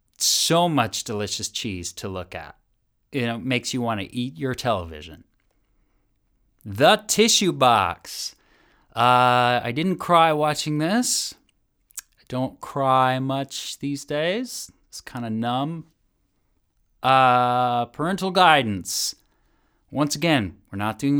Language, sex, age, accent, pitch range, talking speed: English, male, 30-49, American, 110-165 Hz, 120 wpm